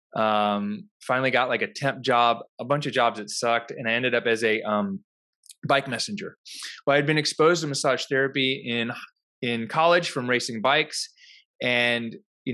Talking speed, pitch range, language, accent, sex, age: 180 wpm, 120-150 Hz, English, American, male, 20-39